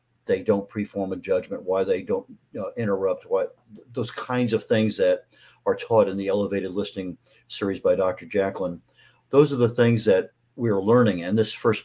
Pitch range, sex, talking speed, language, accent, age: 100-115 Hz, male, 185 wpm, English, American, 50-69